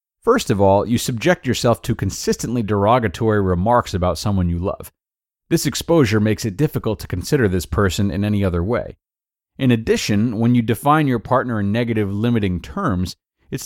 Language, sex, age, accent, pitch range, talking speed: English, male, 30-49, American, 95-125 Hz, 170 wpm